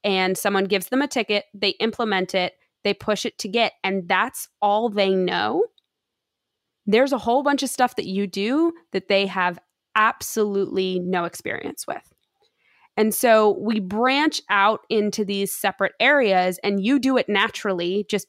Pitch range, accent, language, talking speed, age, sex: 185-235 Hz, American, English, 165 wpm, 20-39, female